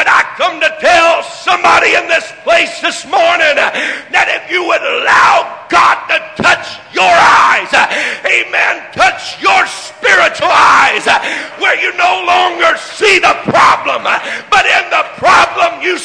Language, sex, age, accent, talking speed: English, male, 50-69, American, 140 wpm